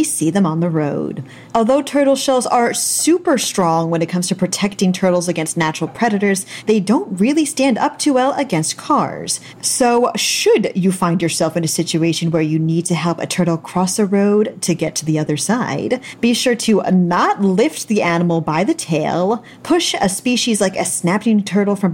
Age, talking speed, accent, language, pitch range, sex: 40-59, 195 wpm, American, English, 165-235 Hz, female